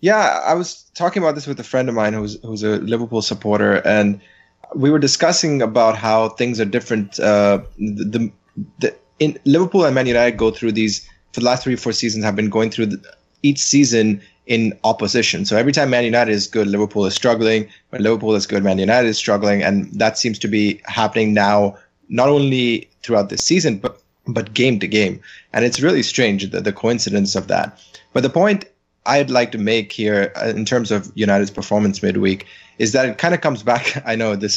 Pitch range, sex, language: 105-125 Hz, male, English